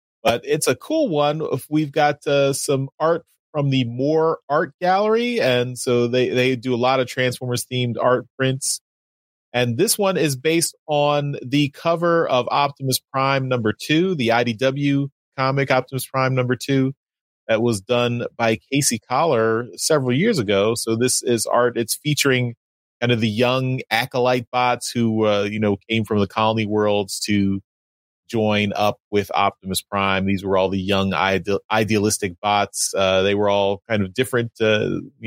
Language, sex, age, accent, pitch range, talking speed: English, male, 30-49, American, 105-140 Hz, 170 wpm